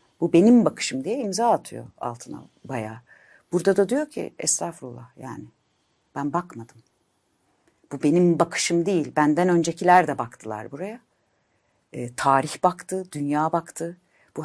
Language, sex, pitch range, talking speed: Turkish, female, 125-200 Hz, 130 wpm